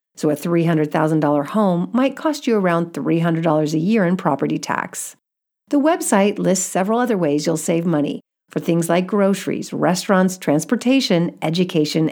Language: English